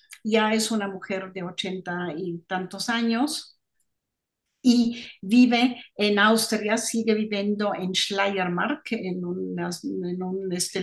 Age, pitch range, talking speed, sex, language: 50-69, 190-235 Hz, 120 wpm, female, Spanish